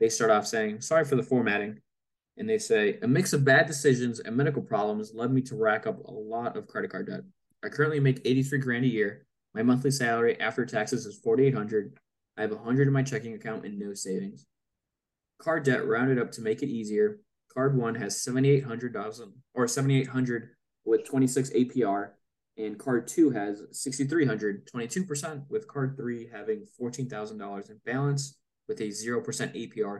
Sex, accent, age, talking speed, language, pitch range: male, American, 20-39, 190 wpm, English, 110-160 Hz